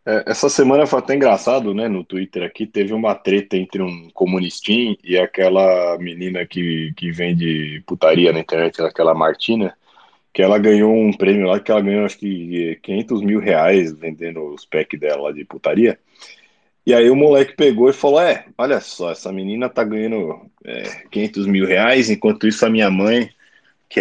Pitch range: 95-125 Hz